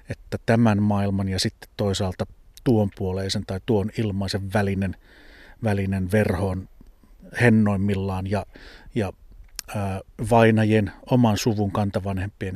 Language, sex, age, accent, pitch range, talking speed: Finnish, male, 30-49, native, 100-115 Hz, 105 wpm